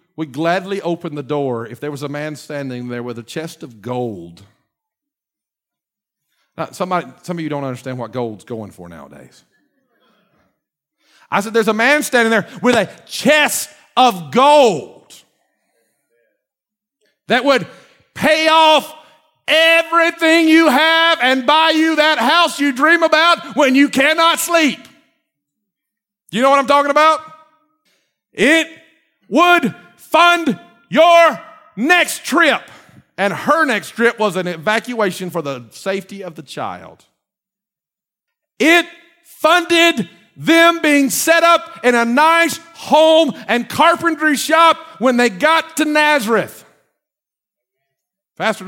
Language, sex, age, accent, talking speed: English, male, 50-69, American, 125 wpm